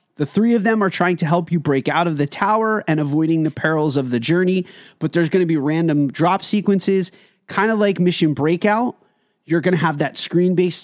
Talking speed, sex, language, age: 225 wpm, male, English, 30-49